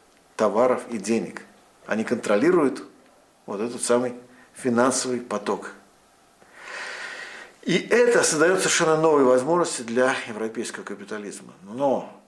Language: Russian